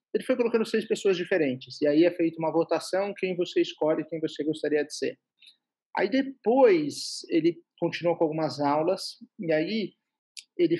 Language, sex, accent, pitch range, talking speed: Portuguese, male, Brazilian, 155-205 Hz, 165 wpm